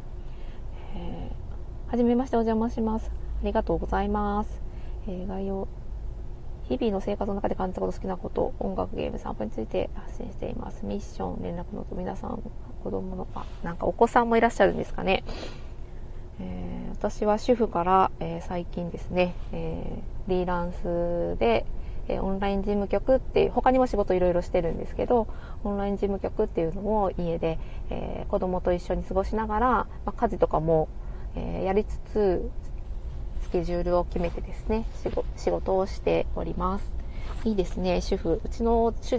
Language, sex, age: Japanese, female, 20-39